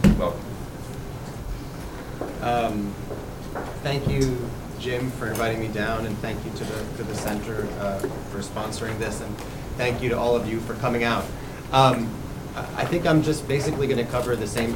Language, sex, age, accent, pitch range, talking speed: English, male, 30-49, American, 115-135 Hz, 170 wpm